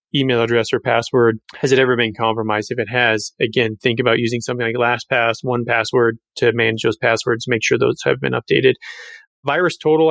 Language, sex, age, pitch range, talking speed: English, male, 30-49, 120-145 Hz, 185 wpm